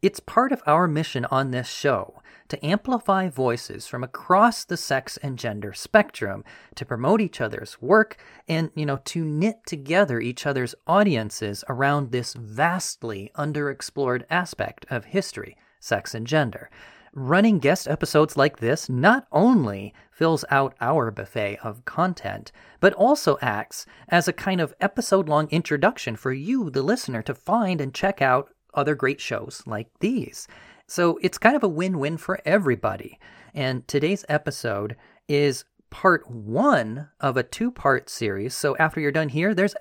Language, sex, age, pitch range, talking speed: English, male, 30-49, 125-185 Hz, 155 wpm